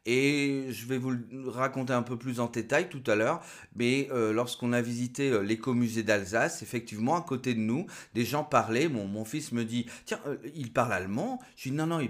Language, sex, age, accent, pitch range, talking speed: French, male, 30-49, French, 100-130 Hz, 230 wpm